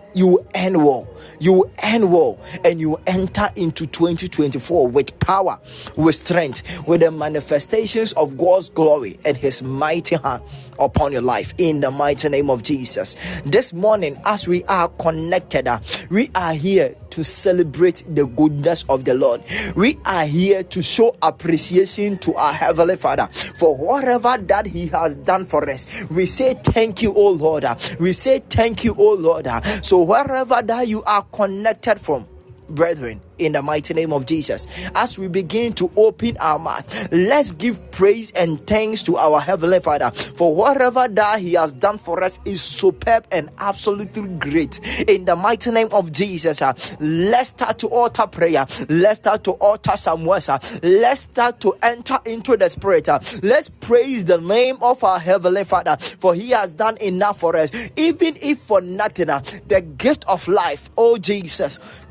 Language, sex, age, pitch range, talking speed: English, male, 20-39, 160-220 Hz, 170 wpm